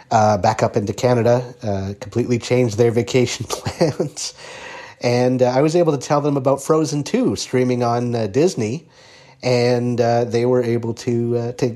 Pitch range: 105-125 Hz